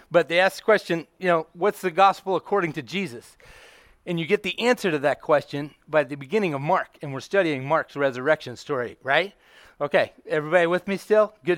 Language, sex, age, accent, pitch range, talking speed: English, male, 30-49, American, 140-185 Hz, 200 wpm